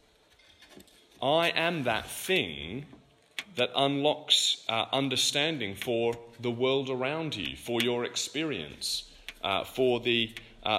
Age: 30-49